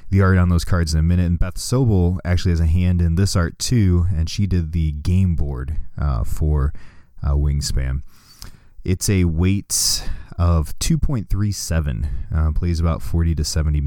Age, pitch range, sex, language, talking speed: 20-39, 80-100 Hz, male, English, 175 wpm